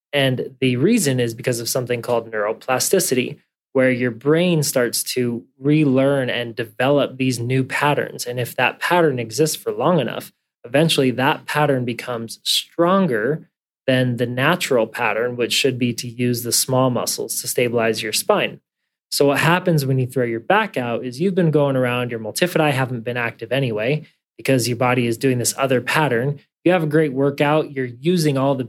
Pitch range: 120-150 Hz